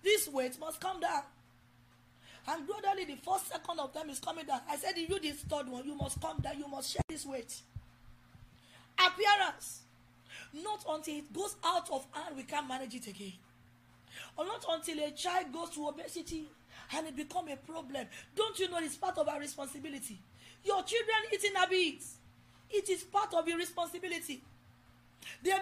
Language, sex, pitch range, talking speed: English, female, 235-350 Hz, 180 wpm